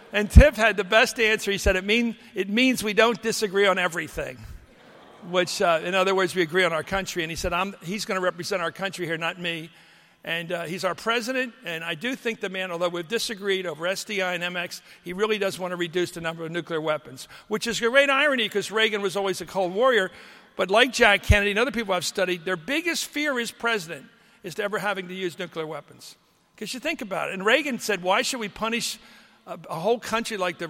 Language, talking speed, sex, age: English, 230 wpm, male, 60-79